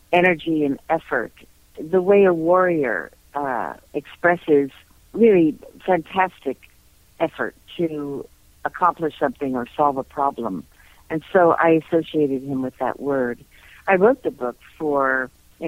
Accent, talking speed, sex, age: American, 125 wpm, female, 60-79